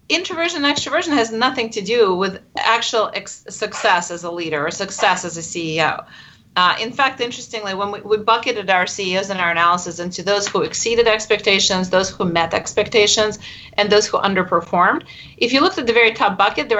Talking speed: 190 wpm